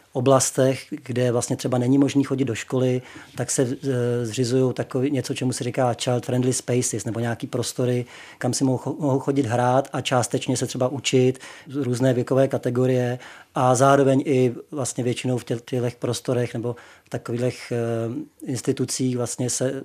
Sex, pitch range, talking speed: male, 125-135 Hz, 155 wpm